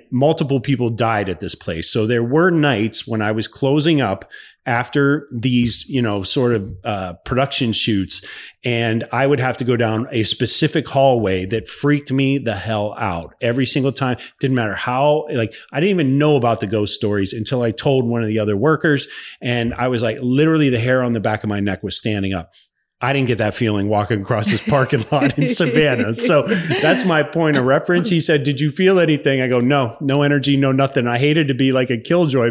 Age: 30-49